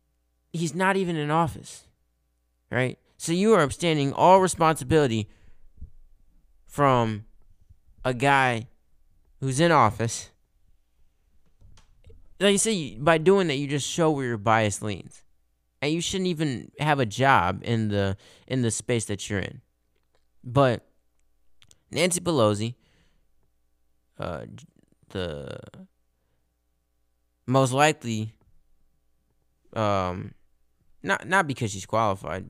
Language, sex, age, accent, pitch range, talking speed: English, male, 20-39, American, 70-120 Hz, 110 wpm